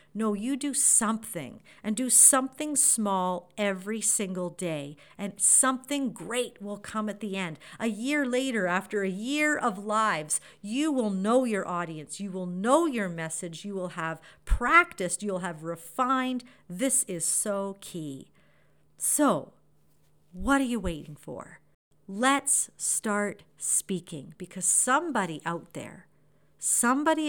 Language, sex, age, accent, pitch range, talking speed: English, female, 50-69, American, 170-230 Hz, 135 wpm